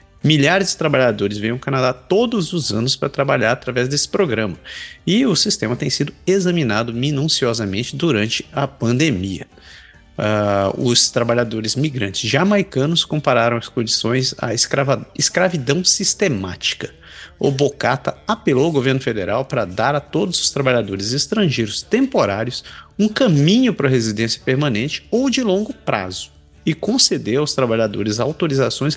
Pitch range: 110-170 Hz